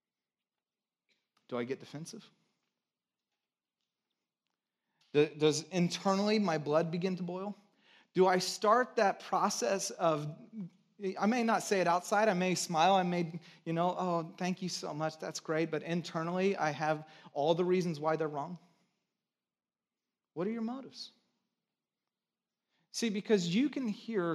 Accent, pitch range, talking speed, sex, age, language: American, 155-210 Hz, 140 wpm, male, 30-49, English